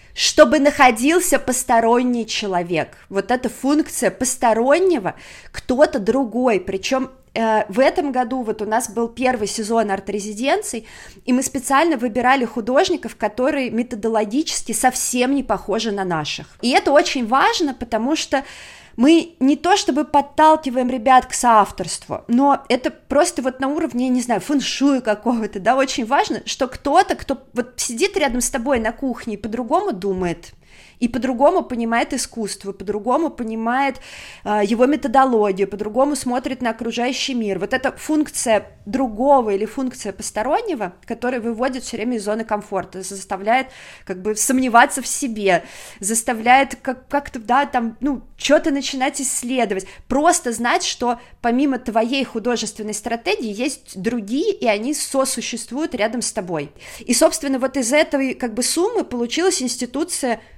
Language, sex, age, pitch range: Russian, female, 20-39, 225-275 Hz